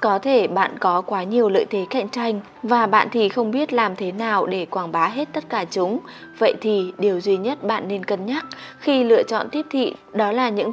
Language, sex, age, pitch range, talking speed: Vietnamese, female, 20-39, 205-245 Hz, 235 wpm